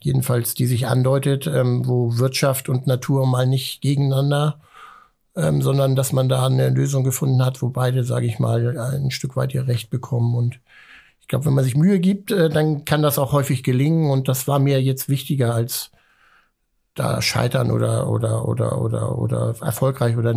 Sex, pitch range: male, 130-150 Hz